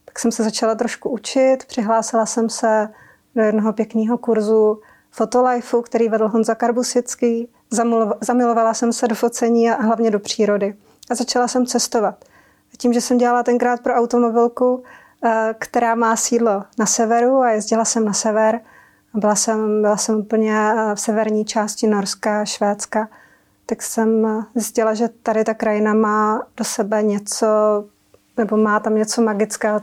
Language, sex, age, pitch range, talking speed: Czech, female, 30-49, 220-240 Hz, 150 wpm